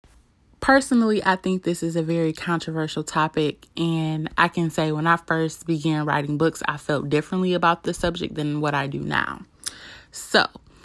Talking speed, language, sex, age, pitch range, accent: 170 wpm, English, female, 20-39, 155-180 Hz, American